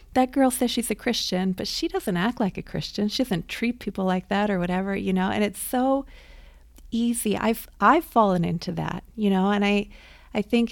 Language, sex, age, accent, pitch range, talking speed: English, female, 30-49, American, 175-205 Hz, 215 wpm